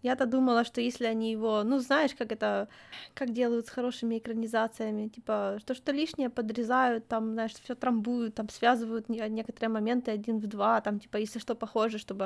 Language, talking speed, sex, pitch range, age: Ukrainian, 180 wpm, female, 225-285 Hz, 20-39